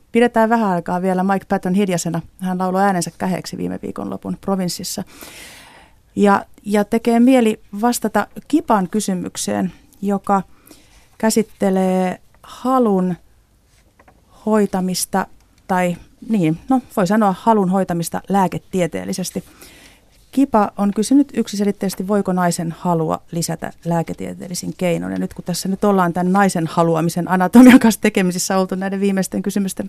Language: Finnish